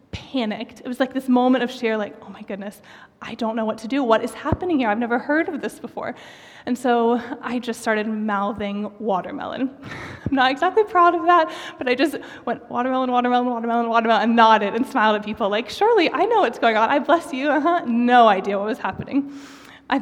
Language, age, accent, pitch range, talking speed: English, 20-39, American, 210-265 Hz, 220 wpm